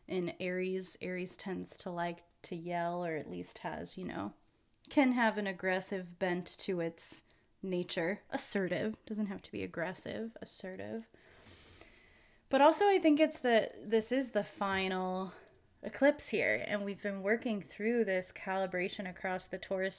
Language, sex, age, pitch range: English, female, 20-39, 180-215 Hz